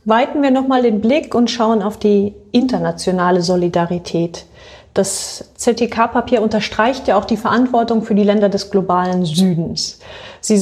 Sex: female